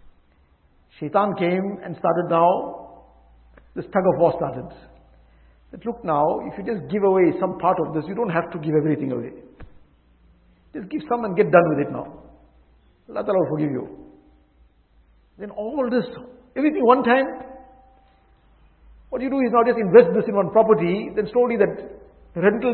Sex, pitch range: male, 165-235 Hz